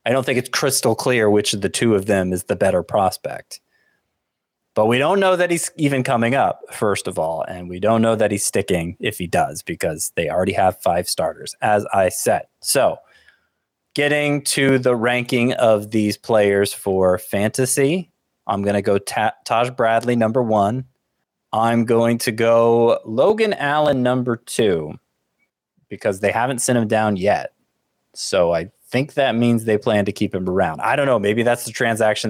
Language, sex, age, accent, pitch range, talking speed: English, male, 20-39, American, 100-125 Hz, 180 wpm